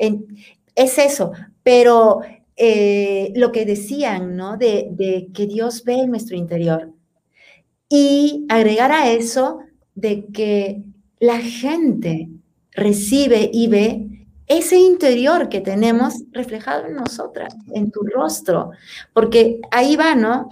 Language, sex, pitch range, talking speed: Spanish, female, 220-270 Hz, 120 wpm